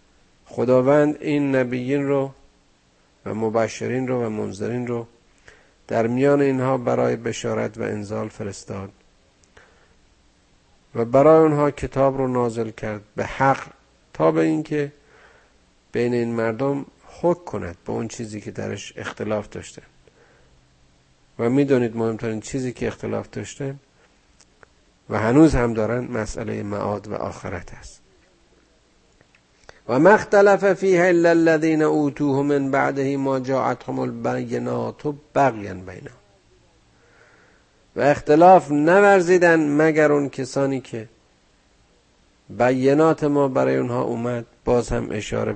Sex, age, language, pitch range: male, 50-69, Persian, 100-140 Hz